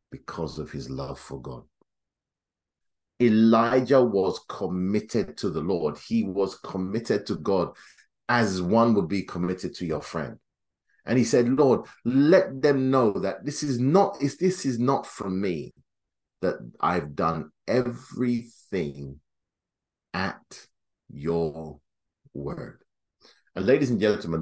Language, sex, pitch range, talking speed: English, male, 80-120 Hz, 130 wpm